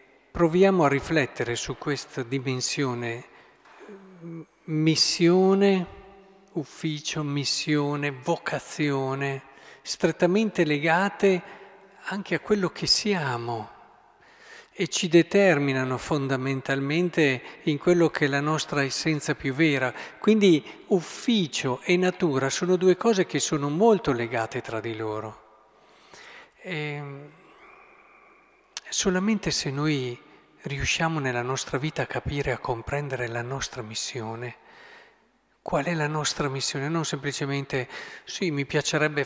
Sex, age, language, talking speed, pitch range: male, 50-69, Italian, 105 wpm, 135-185 Hz